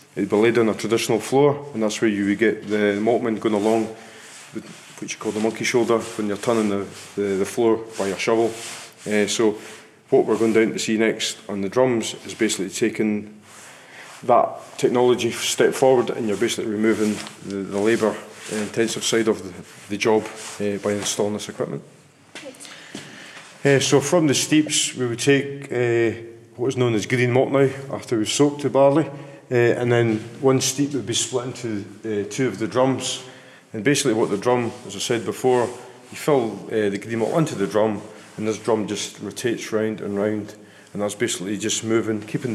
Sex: male